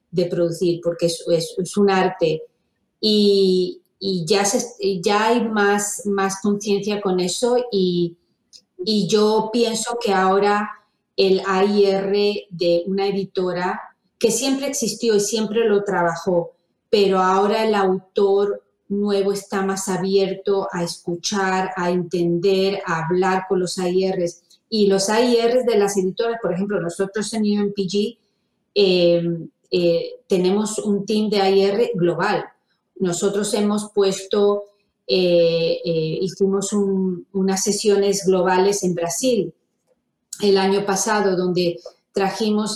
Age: 30-49